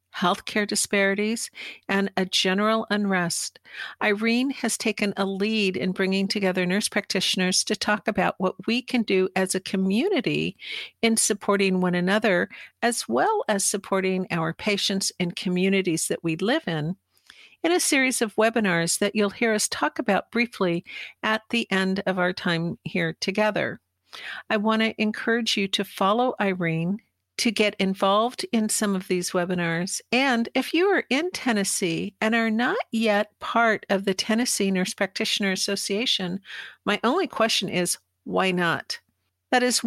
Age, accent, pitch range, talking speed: 50-69, American, 185-225 Hz, 155 wpm